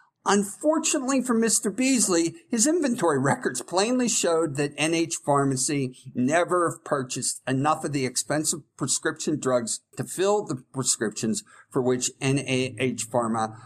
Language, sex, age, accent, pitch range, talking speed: English, male, 50-69, American, 120-170 Hz, 125 wpm